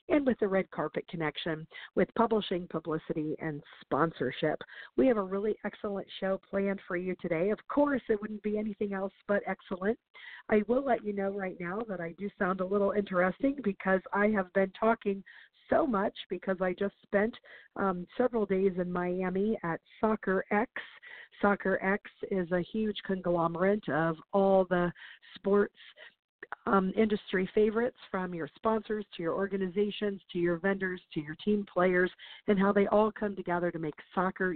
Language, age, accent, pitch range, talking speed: English, 50-69, American, 175-210 Hz, 170 wpm